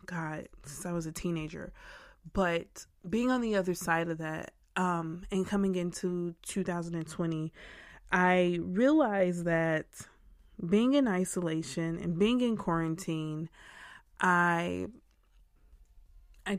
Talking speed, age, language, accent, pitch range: 110 wpm, 20-39, English, American, 165-185 Hz